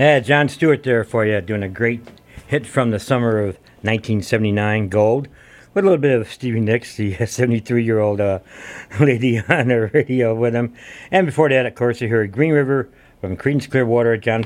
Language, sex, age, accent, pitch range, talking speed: English, male, 60-79, American, 105-130 Hz, 195 wpm